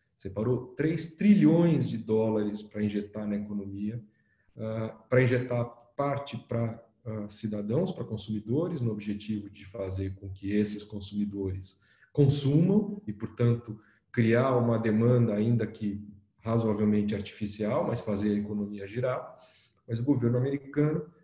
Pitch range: 105-135 Hz